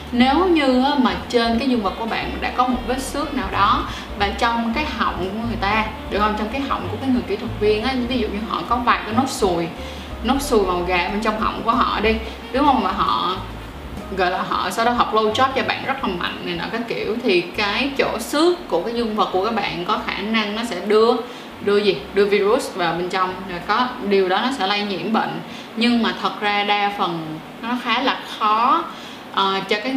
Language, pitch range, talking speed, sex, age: Vietnamese, 205-255 Hz, 240 wpm, female, 20-39